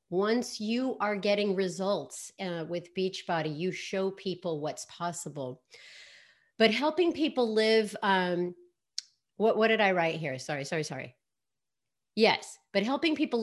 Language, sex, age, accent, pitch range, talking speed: English, female, 40-59, American, 165-210 Hz, 140 wpm